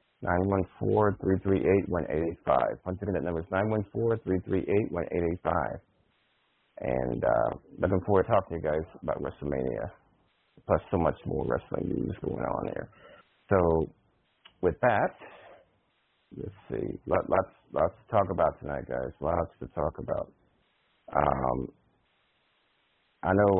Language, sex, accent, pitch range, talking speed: English, male, American, 80-100 Hz, 165 wpm